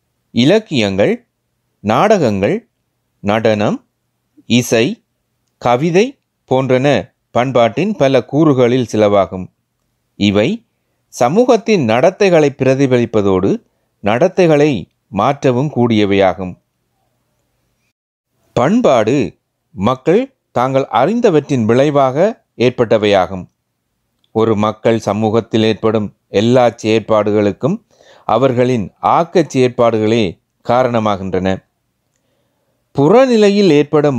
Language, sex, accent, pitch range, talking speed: Tamil, male, native, 110-150 Hz, 60 wpm